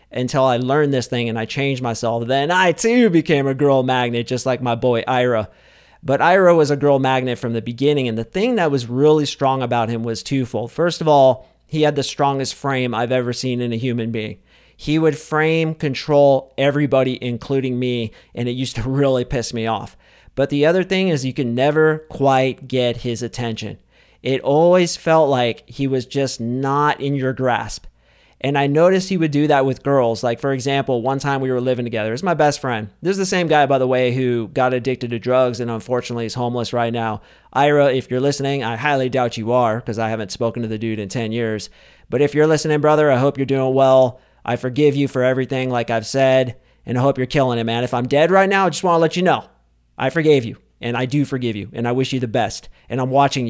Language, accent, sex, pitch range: English, American, male, 120-140 Hz